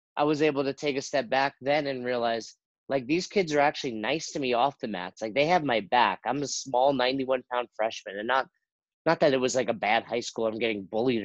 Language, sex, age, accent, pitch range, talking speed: English, male, 30-49, American, 115-140 Hz, 250 wpm